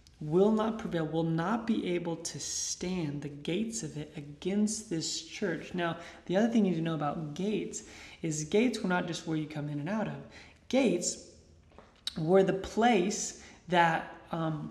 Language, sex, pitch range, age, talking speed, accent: English, male, 150-185 Hz, 20-39, 180 wpm, American